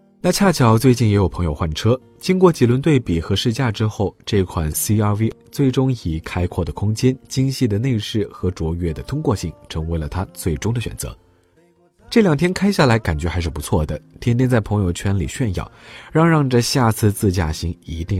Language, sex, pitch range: Chinese, male, 85-125 Hz